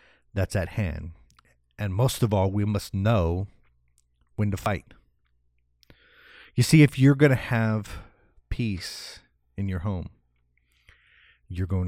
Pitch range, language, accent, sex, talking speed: 85-120 Hz, English, American, male, 130 wpm